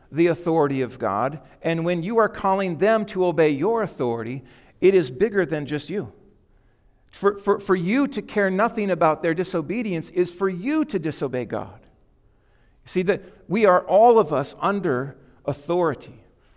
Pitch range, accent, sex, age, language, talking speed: 145-200 Hz, American, male, 50-69, English, 165 wpm